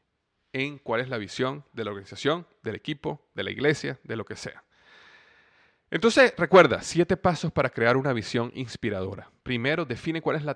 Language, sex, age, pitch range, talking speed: Spanish, male, 30-49, 115-150 Hz, 175 wpm